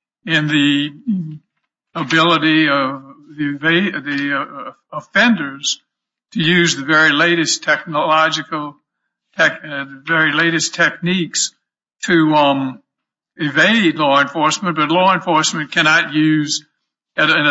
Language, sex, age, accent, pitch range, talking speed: English, male, 60-79, American, 145-180 Hz, 105 wpm